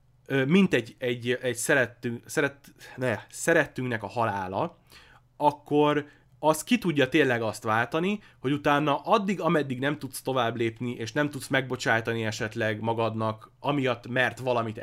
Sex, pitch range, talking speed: male, 115-150 Hz, 140 wpm